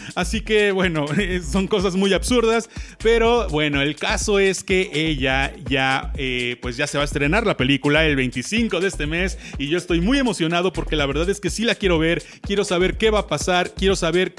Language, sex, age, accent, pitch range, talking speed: Spanish, male, 30-49, Mexican, 150-200 Hz, 215 wpm